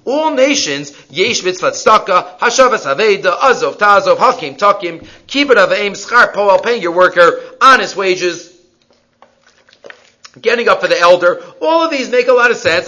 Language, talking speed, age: English, 150 wpm, 40-59